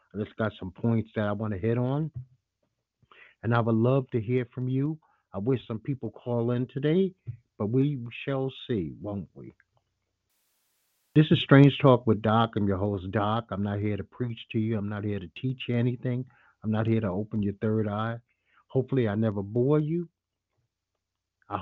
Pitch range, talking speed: 105-130 Hz, 195 wpm